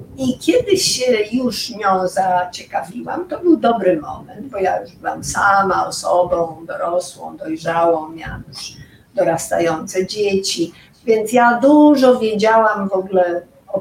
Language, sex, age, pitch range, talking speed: Polish, female, 50-69, 180-245 Hz, 125 wpm